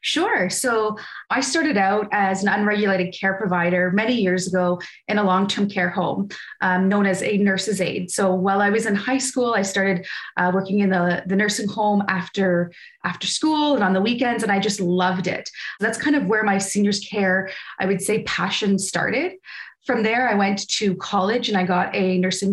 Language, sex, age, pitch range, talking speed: English, female, 20-39, 190-230 Hz, 200 wpm